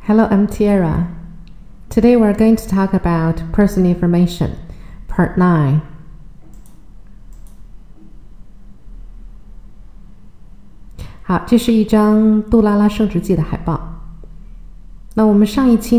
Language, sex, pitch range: Chinese, female, 135-180 Hz